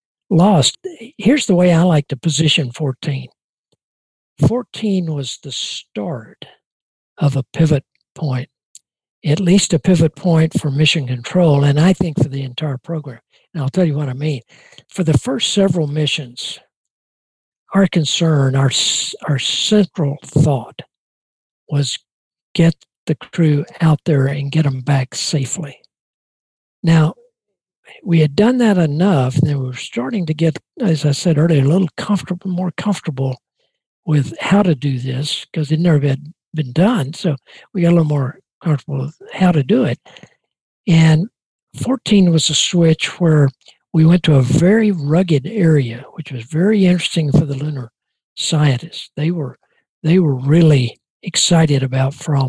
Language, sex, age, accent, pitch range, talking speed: English, male, 60-79, American, 140-175 Hz, 155 wpm